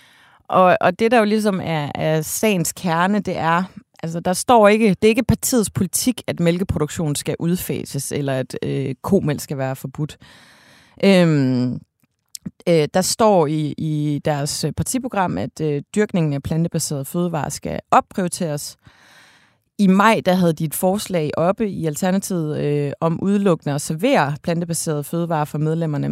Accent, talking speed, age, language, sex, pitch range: native, 150 wpm, 30-49, Danish, female, 150-190 Hz